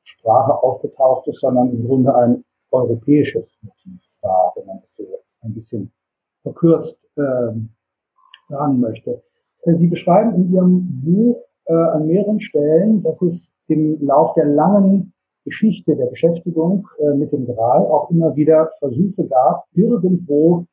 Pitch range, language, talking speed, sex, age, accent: 145-190 Hz, German, 135 wpm, male, 50-69, German